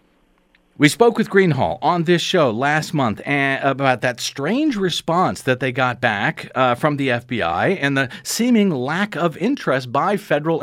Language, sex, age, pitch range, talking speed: English, male, 50-69, 135-200 Hz, 165 wpm